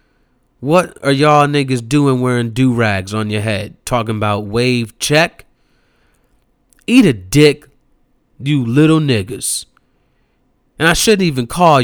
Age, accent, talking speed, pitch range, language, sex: 30-49, American, 125 wpm, 115-165 Hz, English, male